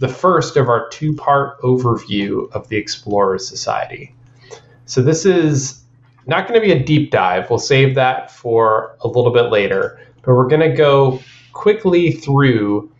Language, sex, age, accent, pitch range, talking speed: English, male, 30-49, American, 120-155 Hz, 160 wpm